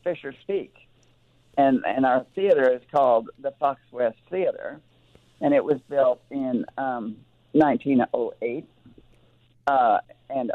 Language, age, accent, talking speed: English, 50-69, American, 120 wpm